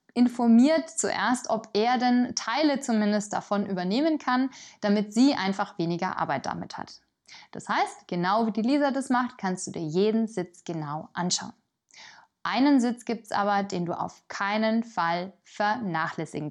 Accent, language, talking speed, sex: German, German, 155 wpm, female